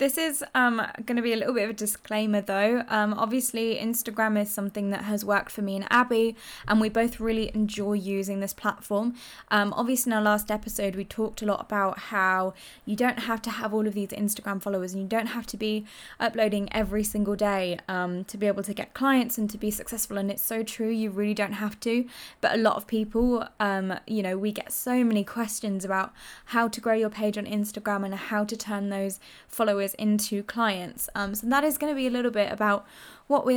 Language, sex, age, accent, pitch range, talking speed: English, female, 10-29, British, 200-235 Hz, 225 wpm